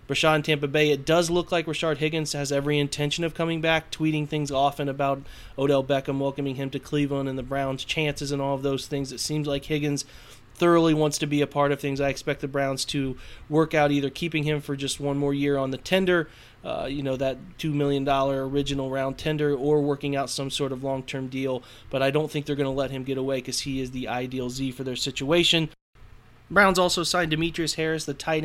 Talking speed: 230 wpm